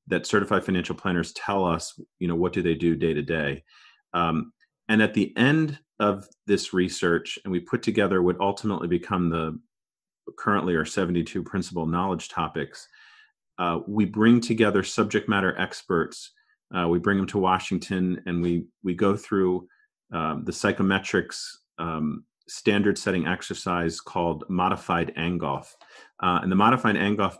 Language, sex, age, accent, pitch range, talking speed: English, male, 40-59, American, 85-110 Hz, 155 wpm